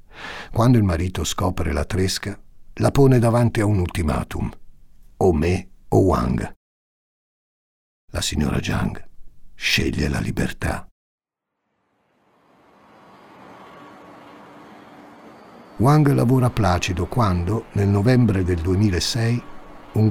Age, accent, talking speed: 50-69, native, 95 wpm